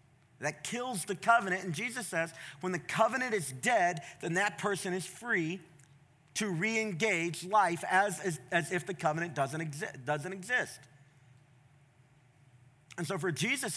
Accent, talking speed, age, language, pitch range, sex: American, 150 wpm, 40-59, English, 145-205 Hz, male